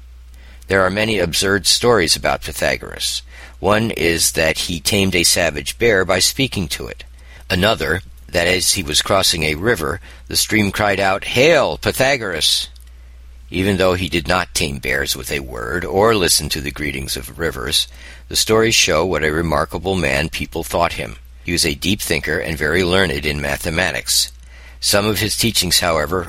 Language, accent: English, American